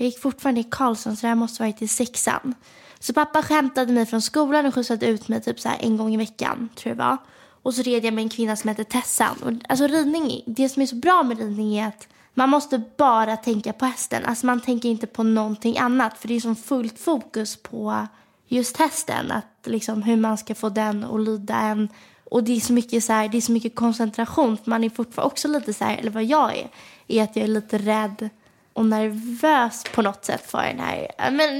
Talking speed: 235 wpm